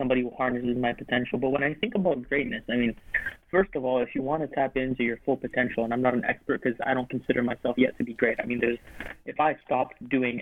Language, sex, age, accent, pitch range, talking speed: English, male, 20-39, American, 125-145 Hz, 265 wpm